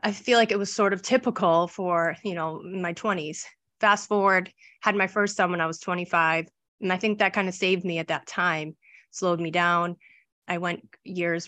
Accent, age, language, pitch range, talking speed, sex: American, 30-49, English, 170-200 Hz, 210 wpm, female